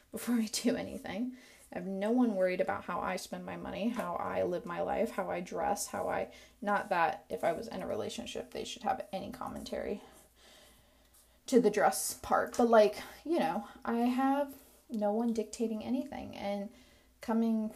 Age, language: 20-39, English